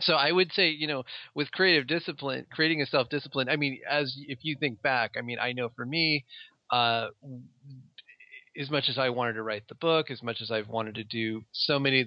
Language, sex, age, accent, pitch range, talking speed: English, male, 30-49, American, 115-145 Hz, 225 wpm